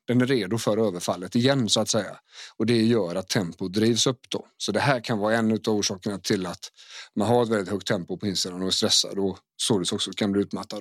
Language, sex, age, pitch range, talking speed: English, male, 30-49, 105-125 Hz, 245 wpm